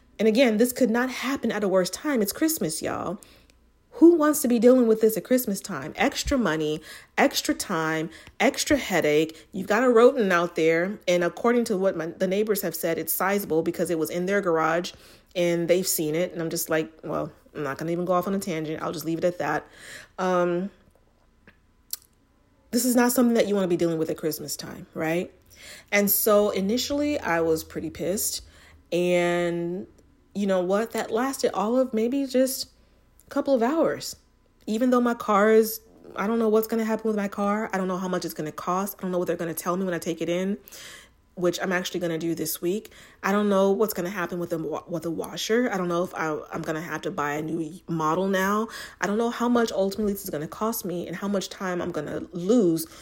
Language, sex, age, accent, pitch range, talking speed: English, female, 30-49, American, 165-220 Hz, 235 wpm